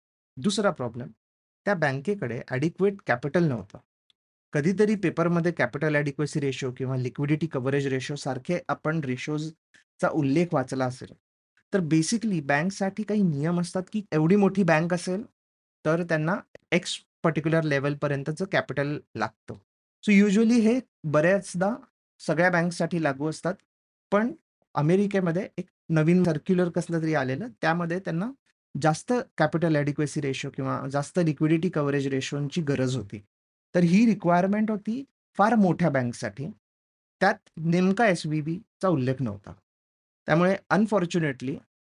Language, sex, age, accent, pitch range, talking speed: Marathi, male, 30-49, native, 140-185 Hz, 110 wpm